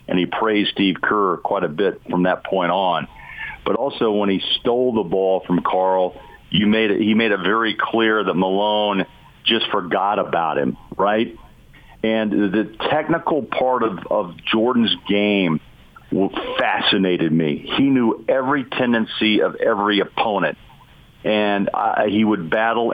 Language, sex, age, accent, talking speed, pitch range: English, male, 50-69, American, 150 wpm, 95-110 Hz